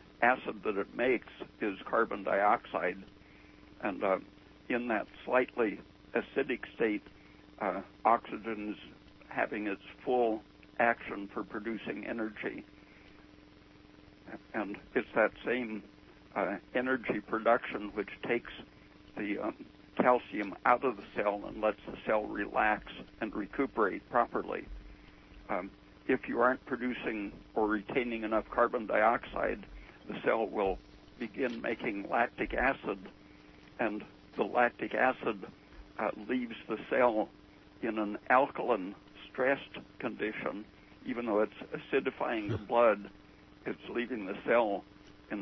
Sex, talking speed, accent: male, 115 wpm, American